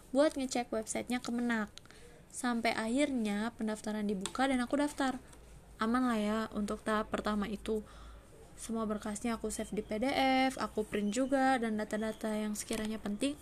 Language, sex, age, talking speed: Indonesian, female, 20-39, 145 wpm